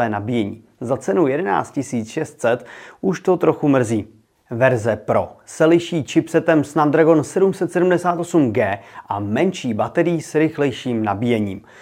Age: 30-49